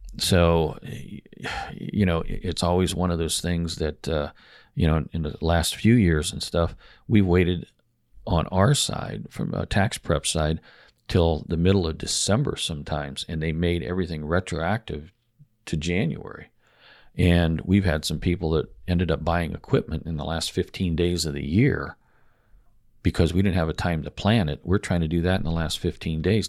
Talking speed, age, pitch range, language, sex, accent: 185 wpm, 40-59, 80-95 Hz, English, male, American